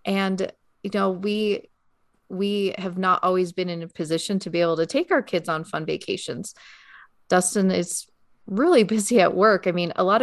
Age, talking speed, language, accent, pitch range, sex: 30-49, 190 wpm, English, American, 170-205 Hz, female